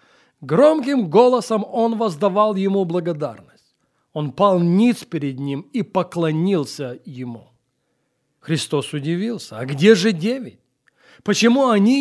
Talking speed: 110 wpm